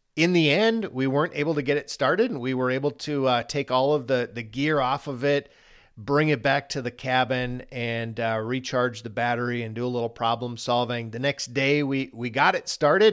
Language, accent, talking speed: English, American, 230 wpm